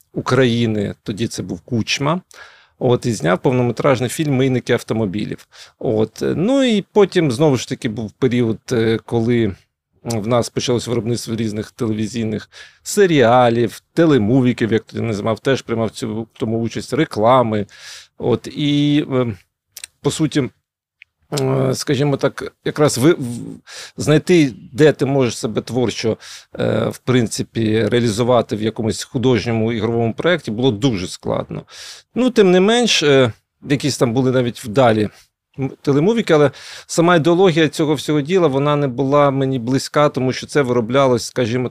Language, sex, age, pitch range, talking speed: Ukrainian, male, 40-59, 115-140 Hz, 125 wpm